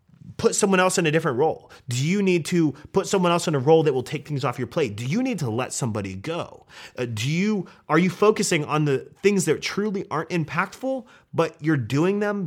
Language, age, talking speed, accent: English, 30-49, 230 wpm, American